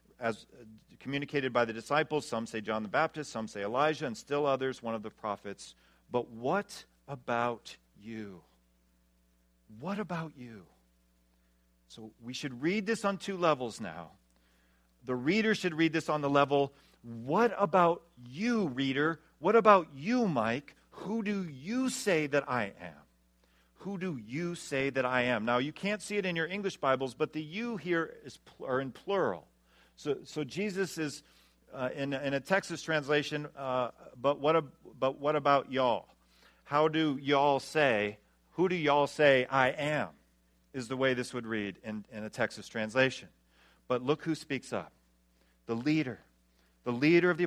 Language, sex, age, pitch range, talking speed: English, male, 40-59, 110-165 Hz, 170 wpm